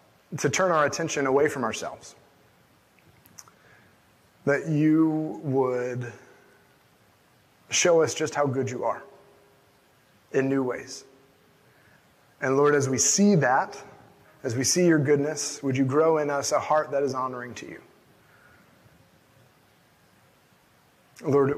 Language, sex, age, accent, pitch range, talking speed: English, male, 30-49, American, 125-150 Hz, 120 wpm